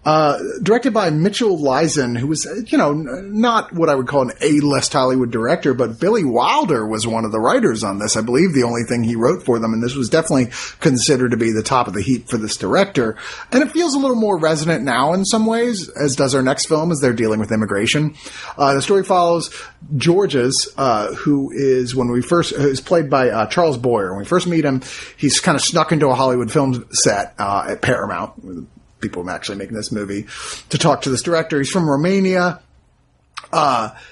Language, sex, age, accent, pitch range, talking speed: English, male, 30-49, American, 125-170 Hz, 215 wpm